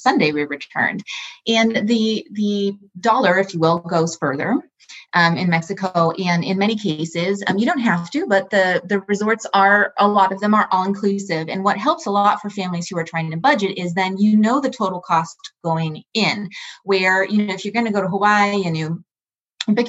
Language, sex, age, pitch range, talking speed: English, female, 20-39, 170-210 Hz, 210 wpm